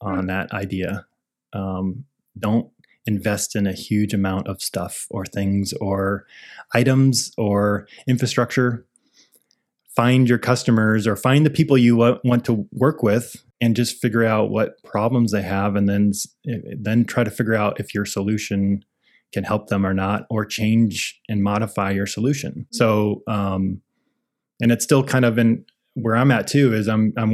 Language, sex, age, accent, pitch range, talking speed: English, male, 20-39, American, 105-125 Hz, 160 wpm